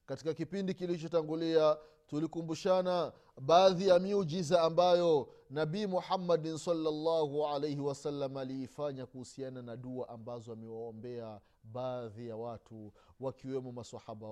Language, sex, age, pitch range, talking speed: Swahili, male, 30-49, 110-165 Hz, 100 wpm